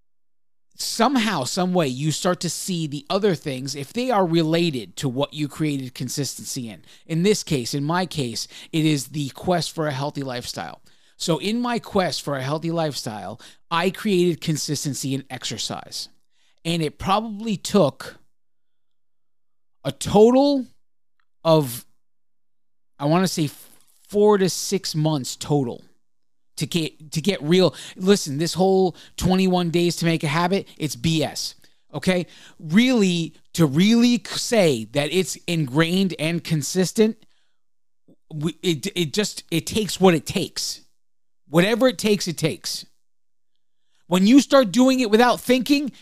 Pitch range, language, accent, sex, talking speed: 145-195 Hz, English, American, male, 140 wpm